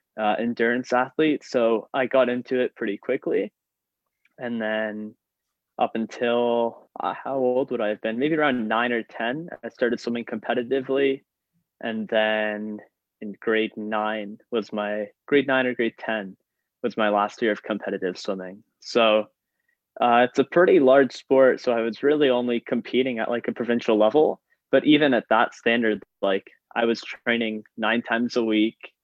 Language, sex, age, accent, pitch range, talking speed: English, male, 10-29, American, 110-130 Hz, 165 wpm